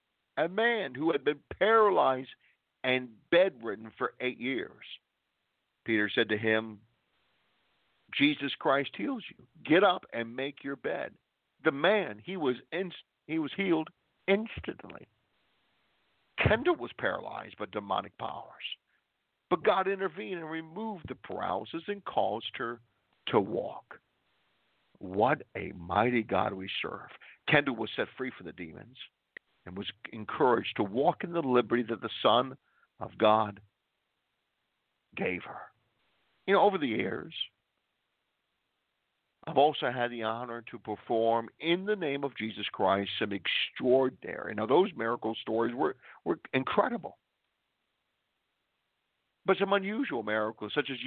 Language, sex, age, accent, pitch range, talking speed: English, male, 50-69, American, 110-165 Hz, 135 wpm